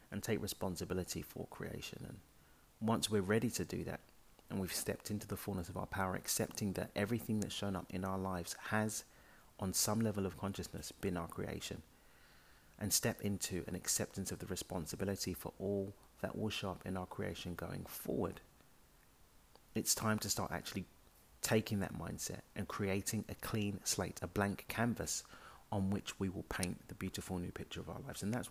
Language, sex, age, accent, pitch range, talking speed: English, male, 30-49, British, 90-105 Hz, 185 wpm